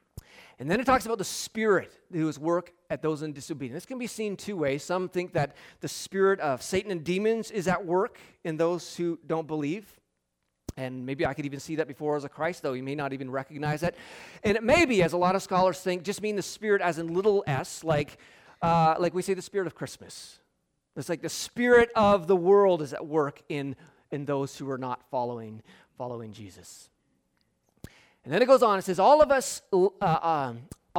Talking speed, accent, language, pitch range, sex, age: 220 wpm, American, English, 140-190 Hz, male, 30-49